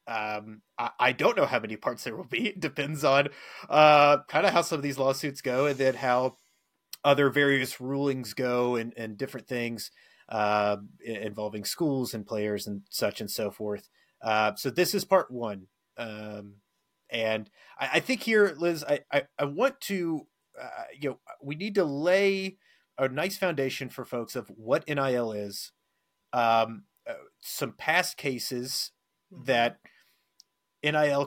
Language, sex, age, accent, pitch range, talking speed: English, male, 30-49, American, 120-150 Hz, 165 wpm